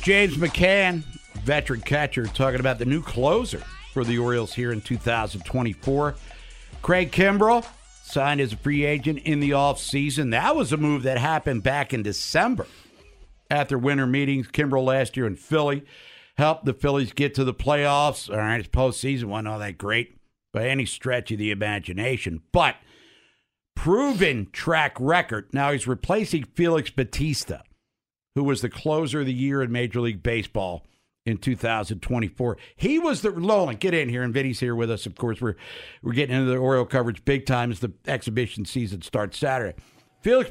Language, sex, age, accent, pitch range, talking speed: English, male, 60-79, American, 115-150 Hz, 170 wpm